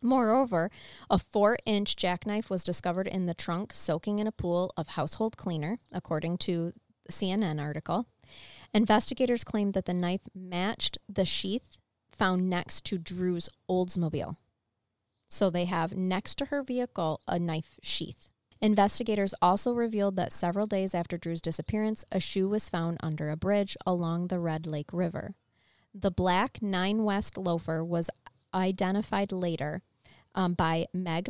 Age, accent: 20-39, American